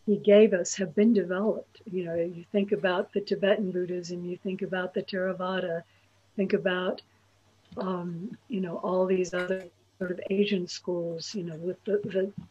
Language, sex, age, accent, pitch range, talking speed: English, female, 60-79, American, 175-205 Hz, 175 wpm